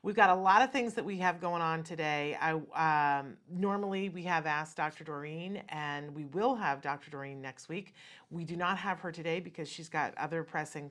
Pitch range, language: 150-180 Hz, English